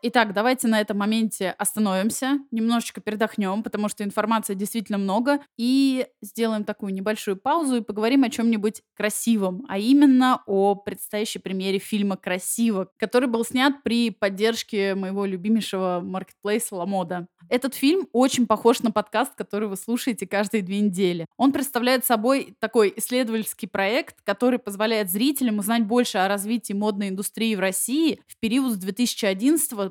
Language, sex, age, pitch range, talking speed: Russian, female, 20-39, 200-235 Hz, 145 wpm